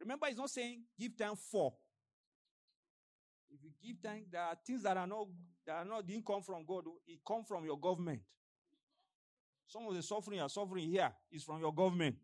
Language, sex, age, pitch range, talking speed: English, male, 50-69, 170-280 Hz, 195 wpm